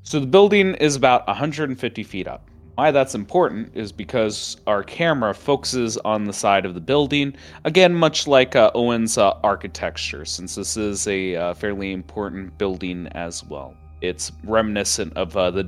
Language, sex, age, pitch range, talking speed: English, male, 30-49, 95-120 Hz, 170 wpm